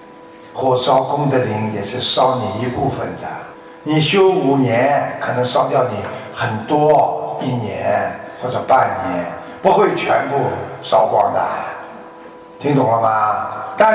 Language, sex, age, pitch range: Chinese, male, 50-69, 165-240 Hz